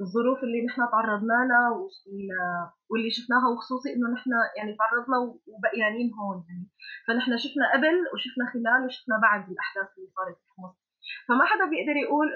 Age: 20-39